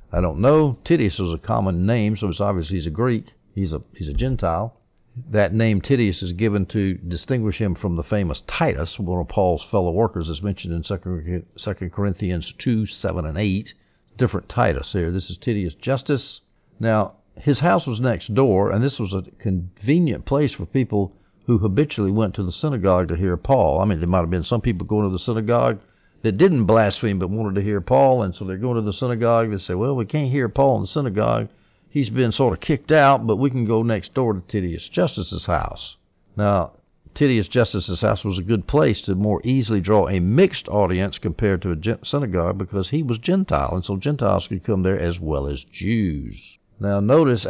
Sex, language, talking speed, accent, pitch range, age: male, English, 205 wpm, American, 95-120 Hz, 60-79